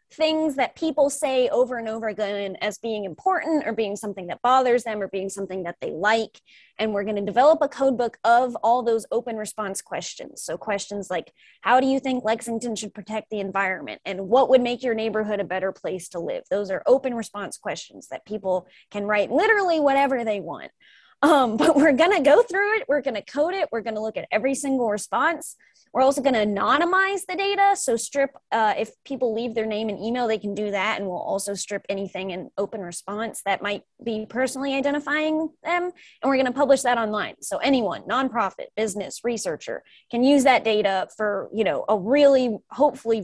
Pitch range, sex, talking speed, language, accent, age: 205-275 Hz, female, 205 wpm, English, American, 20-39